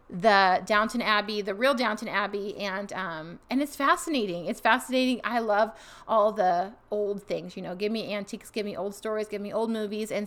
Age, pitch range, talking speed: 30-49, 200-240 Hz, 200 wpm